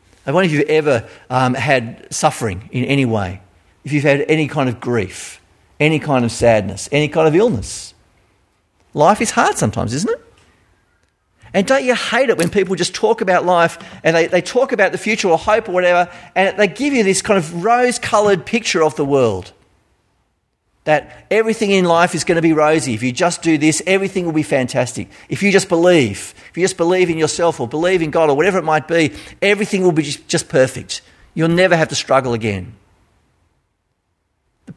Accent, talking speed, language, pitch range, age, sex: Australian, 200 wpm, English, 115-180 Hz, 40-59, male